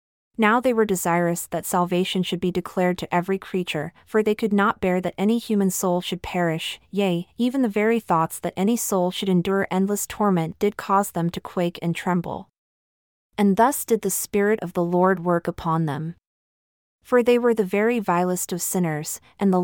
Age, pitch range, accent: 30-49, 170-210 Hz, American